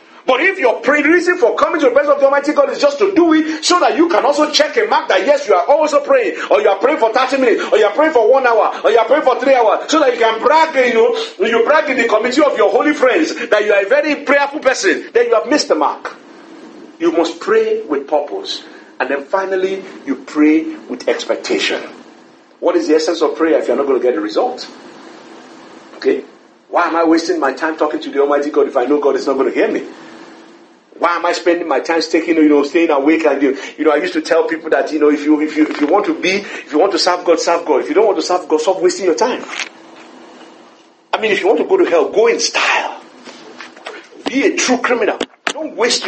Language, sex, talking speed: English, male, 260 wpm